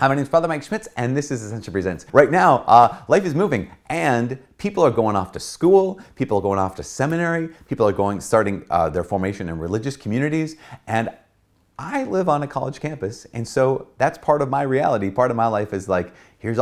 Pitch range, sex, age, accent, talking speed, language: 95-135 Hz, male, 30-49, American, 220 wpm, English